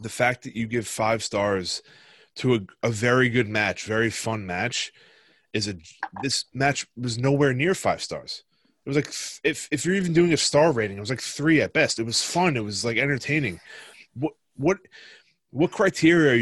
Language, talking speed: English, 195 wpm